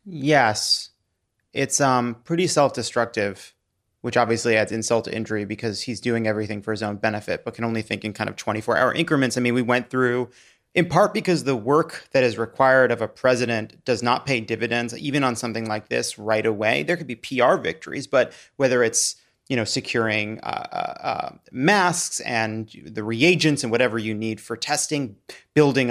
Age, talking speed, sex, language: 30-49, 185 wpm, male, English